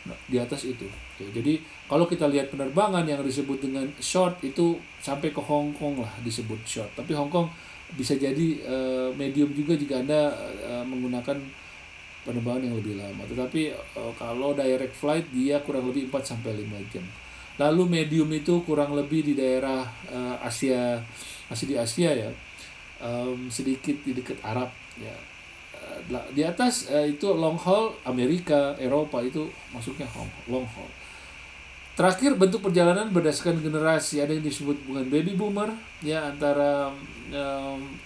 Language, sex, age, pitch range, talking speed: Indonesian, male, 40-59, 125-155 Hz, 135 wpm